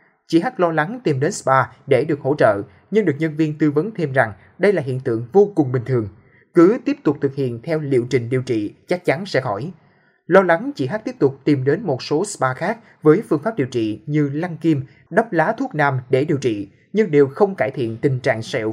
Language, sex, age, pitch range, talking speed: Vietnamese, male, 20-39, 135-185 Hz, 245 wpm